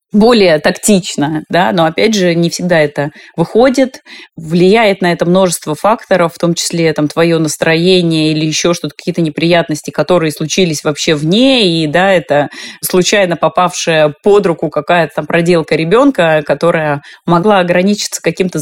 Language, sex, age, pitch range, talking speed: Russian, female, 30-49, 160-195 Hz, 145 wpm